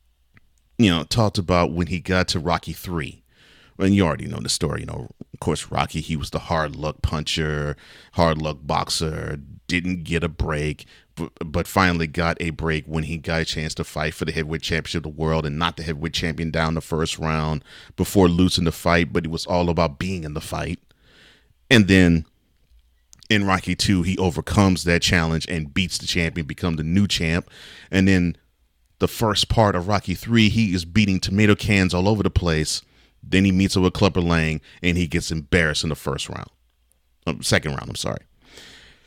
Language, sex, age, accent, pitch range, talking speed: English, male, 30-49, American, 80-95 Hz, 200 wpm